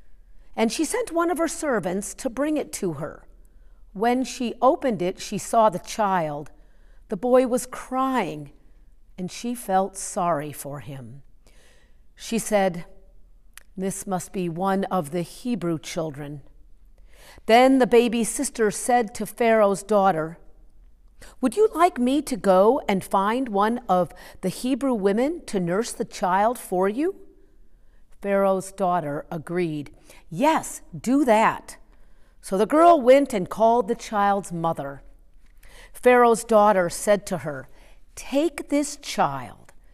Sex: female